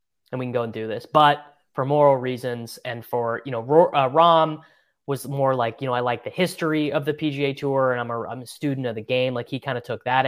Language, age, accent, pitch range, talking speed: English, 20-39, American, 125-155 Hz, 265 wpm